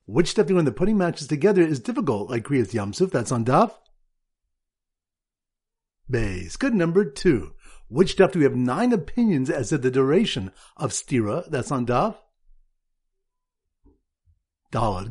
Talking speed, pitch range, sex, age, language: 145 wpm, 125-190 Hz, male, 50-69, English